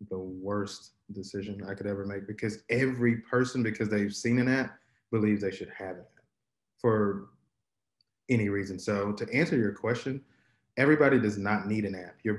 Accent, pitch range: American, 105-120 Hz